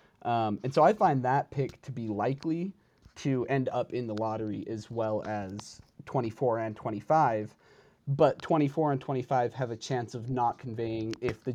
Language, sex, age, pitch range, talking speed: English, male, 30-49, 110-140 Hz, 175 wpm